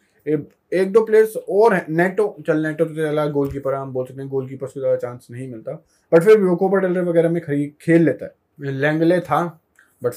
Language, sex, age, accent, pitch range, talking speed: Hindi, male, 20-39, native, 135-165 Hz, 200 wpm